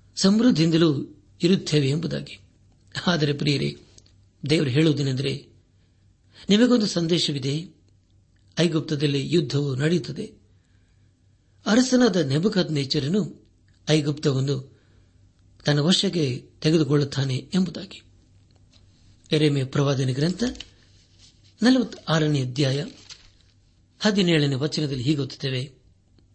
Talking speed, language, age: 60 wpm, Kannada, 60-79